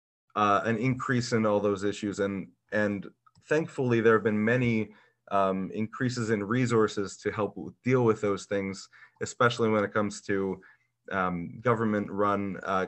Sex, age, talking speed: male, 30-49, 155 wpm